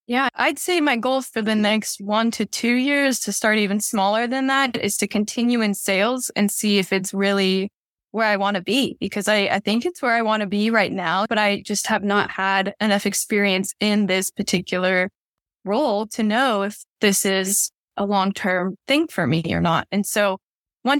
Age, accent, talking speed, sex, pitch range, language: 10-29, American, 210 wpm, female, 200-245 Hz, English